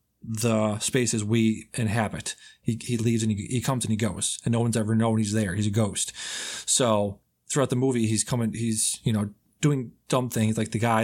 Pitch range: 105-125 Hz